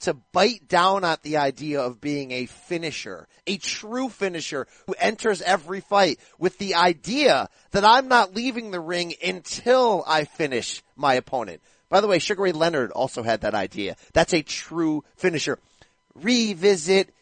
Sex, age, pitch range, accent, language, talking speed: male, 30-49, 150-195 Hz, American, English, 160 wpm